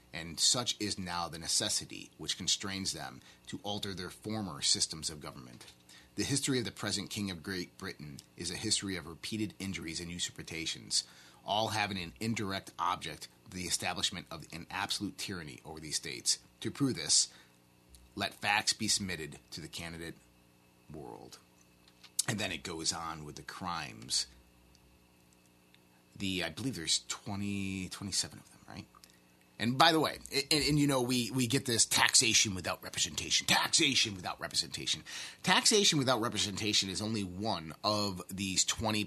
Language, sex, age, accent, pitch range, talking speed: English, male, 30-49, American, 70-110 Hz, 155 wpm